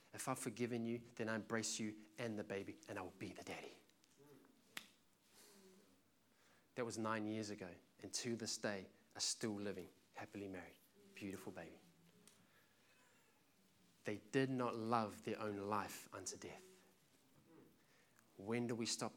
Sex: male